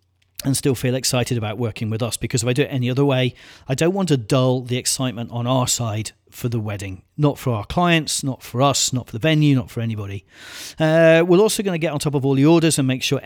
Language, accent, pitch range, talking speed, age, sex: English, British, 115-140 Hz, 265 wpm, 40-59, male